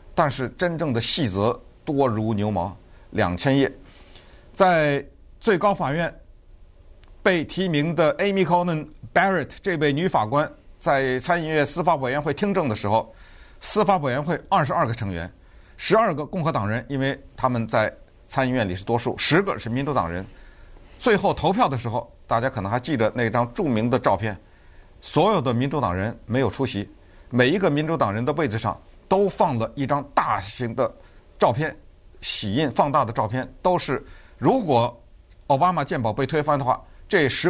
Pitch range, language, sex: 105-150 Hz, Chinese, male